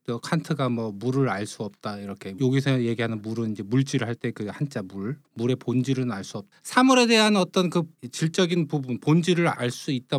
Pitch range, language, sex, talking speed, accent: 130-180 Hz, English, male, 165 wpm, Korean